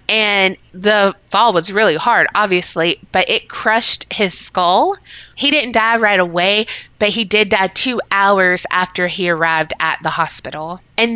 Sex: female